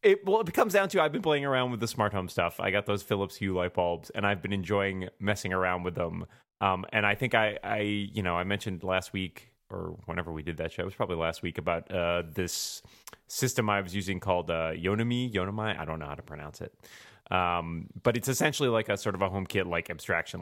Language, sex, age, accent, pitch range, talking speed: English, male, 30-49, American, 90-110 Hz, 245 wpm